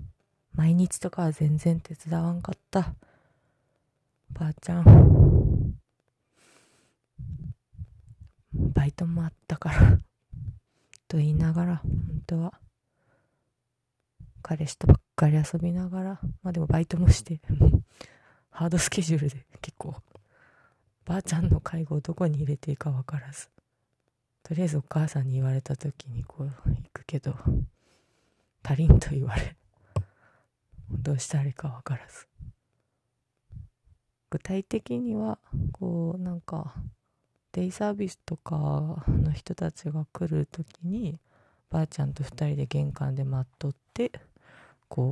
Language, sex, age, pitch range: Japanese, female, 20-39, 125-160 Hz